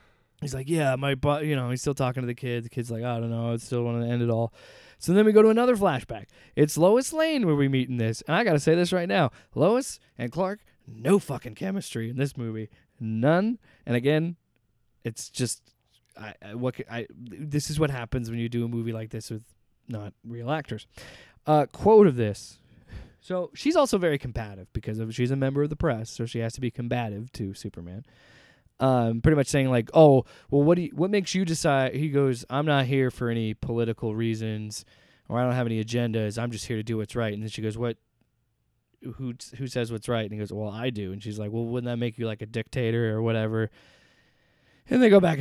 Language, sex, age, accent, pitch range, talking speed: English, male, 20-39, American, 115-150 Hz, 235 wpm